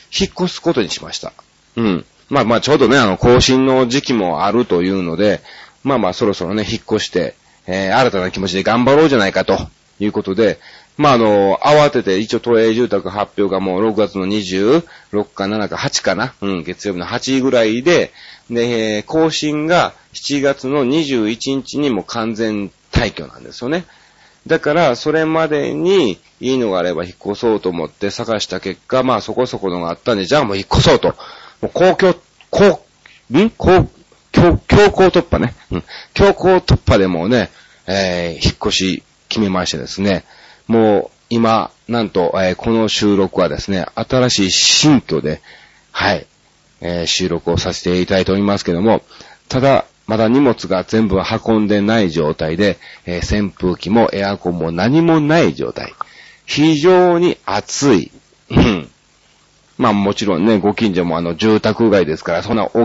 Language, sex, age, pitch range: Japanese, male, 40-59, 95-125 Hz